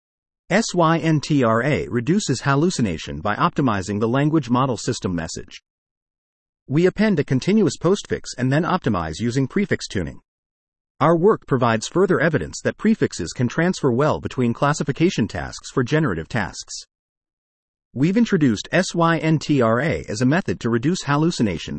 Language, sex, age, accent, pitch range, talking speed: English, male, 40-59, American, 115-160 Hz, 125 wpm